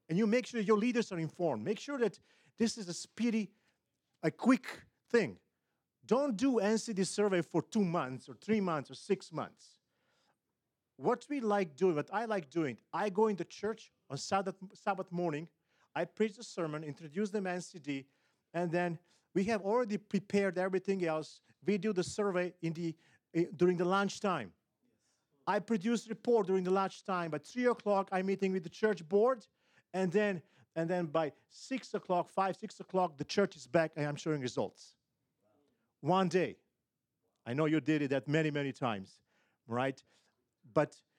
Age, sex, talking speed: 40-59, male, 175 wpm